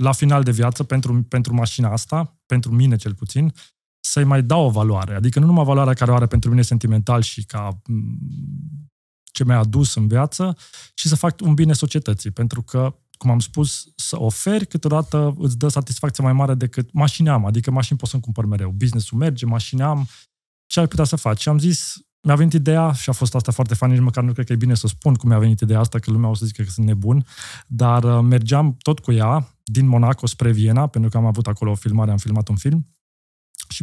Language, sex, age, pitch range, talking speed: Romanian, male, 20-39, 115-145 Hz, 225 wpm